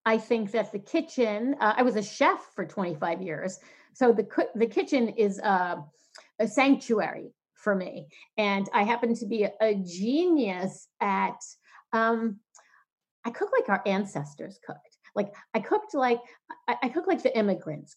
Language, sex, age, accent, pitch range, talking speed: English, female, 40-59, American, 205-260 Hz, 170 wpm